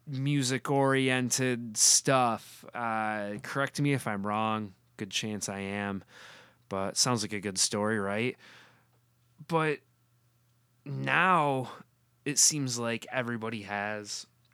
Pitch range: 100-125 Hz